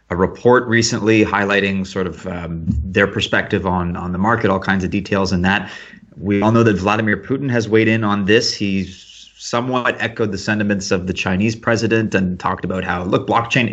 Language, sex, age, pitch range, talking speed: English, male, 30-49, 100-120 Hz, 195 wpm